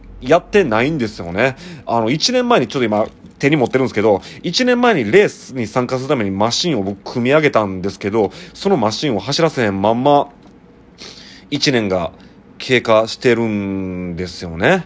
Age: 30-49